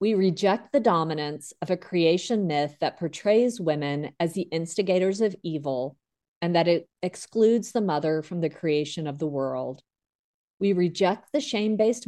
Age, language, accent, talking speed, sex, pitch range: 40-59, English, American, 160 wpm, female, 155-195 Hz